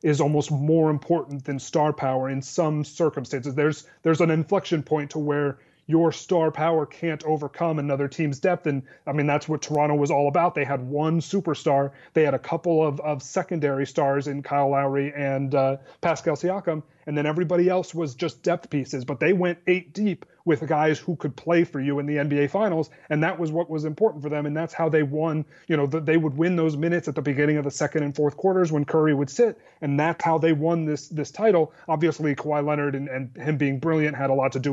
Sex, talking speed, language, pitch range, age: male, 225 wpm, English, 145-170 Hz, 30-49